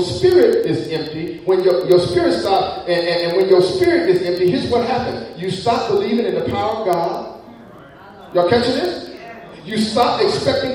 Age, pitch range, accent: 40-59, 235-315 Hz, American